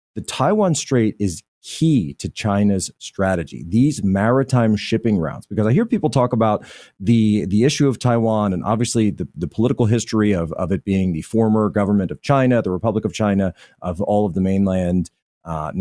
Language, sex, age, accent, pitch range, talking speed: English, male, 30-49, American, 90-115 Hz, 180 wpm